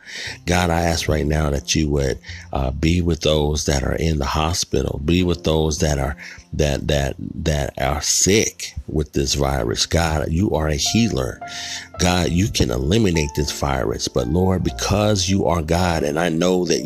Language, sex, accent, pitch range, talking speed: English, male, American, 75-85 Hz, 180 wpm